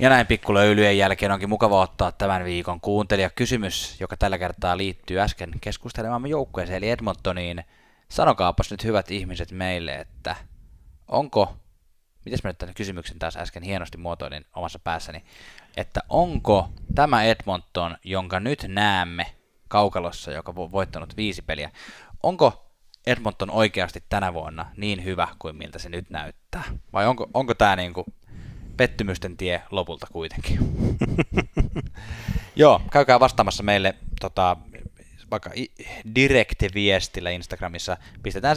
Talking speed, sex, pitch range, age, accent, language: 130 wpm, male, 90-105 Hz, 20-39, native, Finnish